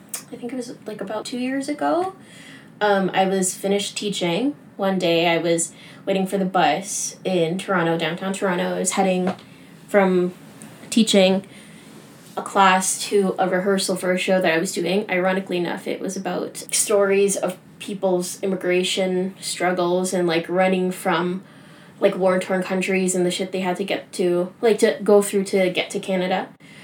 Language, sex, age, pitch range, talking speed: English, female, 20-39, 180-205 Hz, 170 wpm